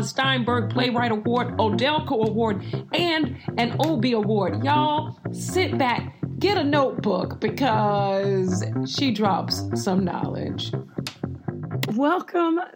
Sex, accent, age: female, American, 40-59